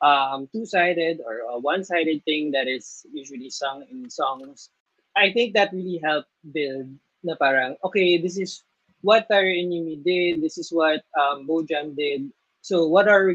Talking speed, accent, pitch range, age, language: 165 wpm, native, 135-180 Hz, 20-39, Filipino